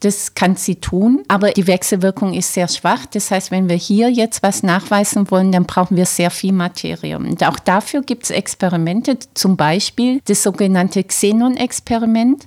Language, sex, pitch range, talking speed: German, female, 185-230 Hz, 175 wpm